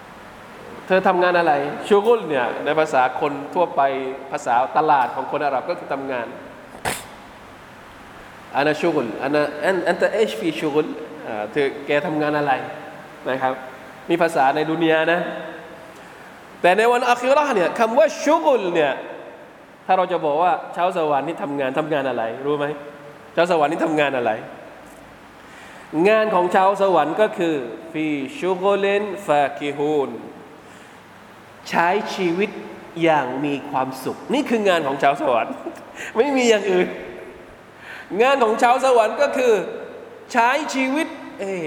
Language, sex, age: Thai, male, 20-39